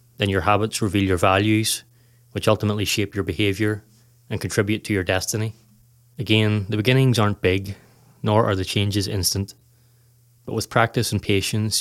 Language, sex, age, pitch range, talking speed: English, male, 20-39, 100-120 Hz, 160 wpm